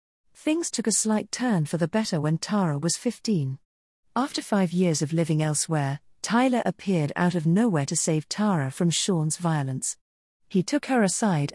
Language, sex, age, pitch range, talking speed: English, female, 40-59, 155-215 Hz, 170 wpm